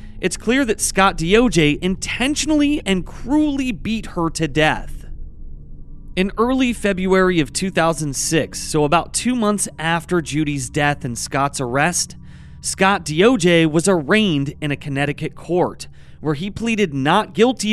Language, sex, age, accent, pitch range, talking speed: English, male, 30-49, American, 140-195 Hz, 135 wpm